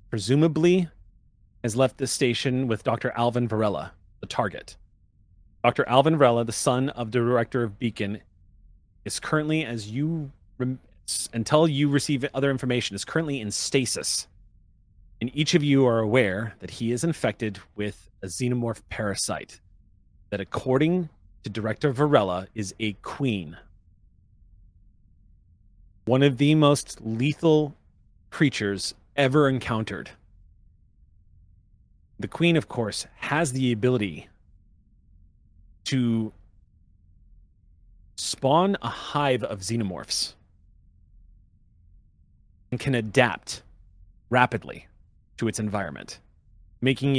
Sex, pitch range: male, 90-130 Hz